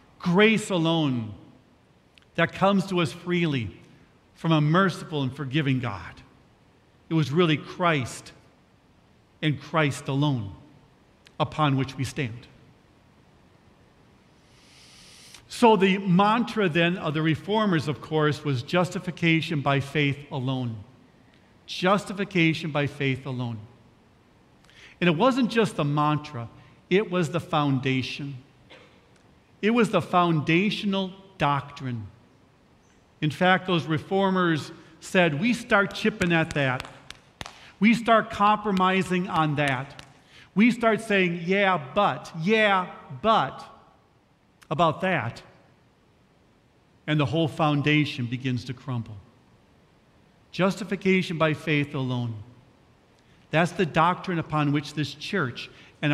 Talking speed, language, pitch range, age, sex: 105 wpm, English, 135-185 Hz, 50-69, male